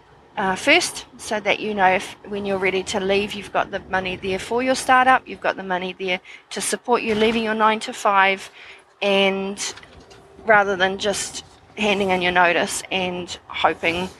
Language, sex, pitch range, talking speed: English, female, 170-205 Hz, 180 wpm